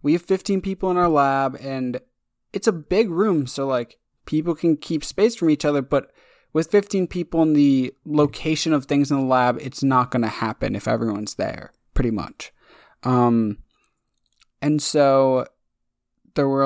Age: 20-39